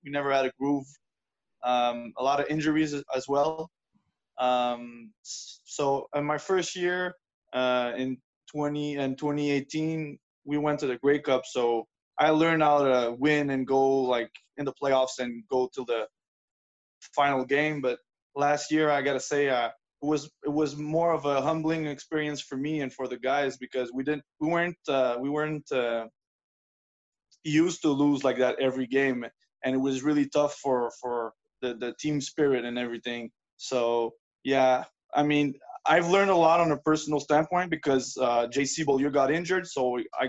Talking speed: 180 wpm